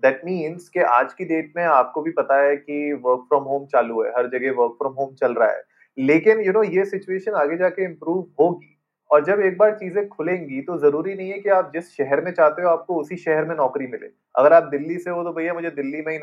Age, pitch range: 30-49, 140-195 Hz